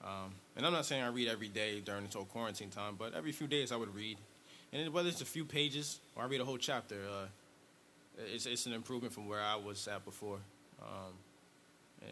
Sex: male